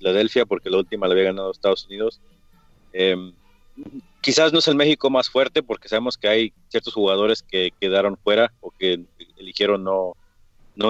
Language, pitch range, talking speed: English, 95-125 Hz, 165 wpm